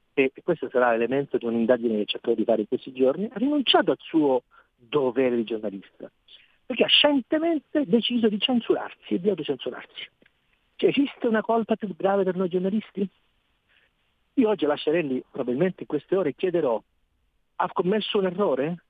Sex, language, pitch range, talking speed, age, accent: male, Italian, 130-210 Hz, 160 wpm, 50-69, native